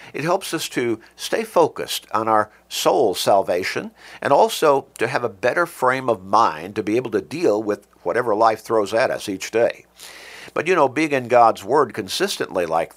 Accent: American